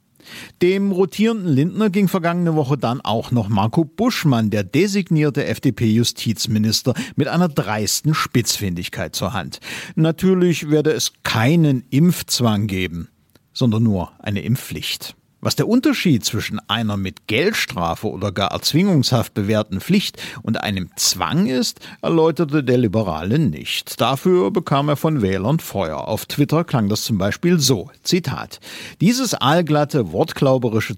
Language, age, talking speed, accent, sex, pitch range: German, 50-69, 130 wpm, German, male, 105-165 Hz